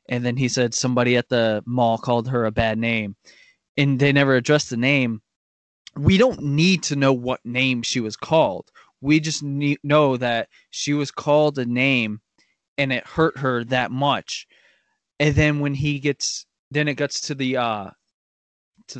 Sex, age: male, 20-39